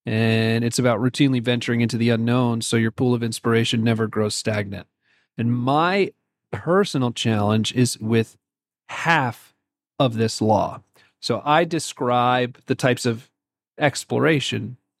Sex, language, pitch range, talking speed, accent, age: male, English, 115-135 Hz, 130 wpm, American, 40-59